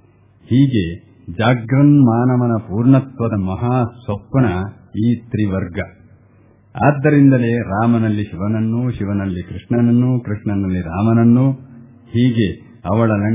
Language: Kannada